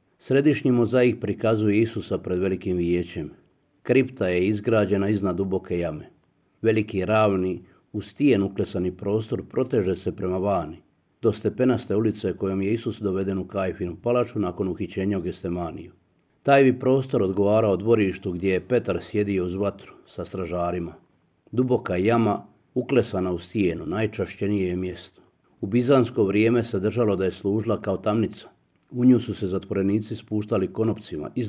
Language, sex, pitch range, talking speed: Croatian, male, 90-115 Hz, 140 wpm